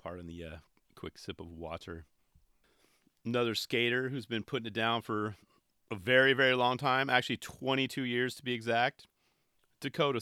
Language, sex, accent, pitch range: English, male, American, 100-135 Hz